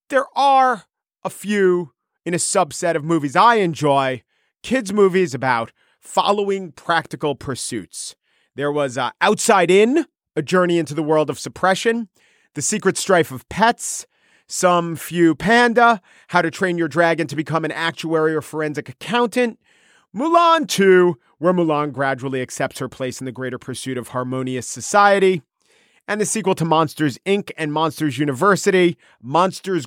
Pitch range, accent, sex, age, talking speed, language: 135-185 Hz, American, male, 40-59, 150 wpm, English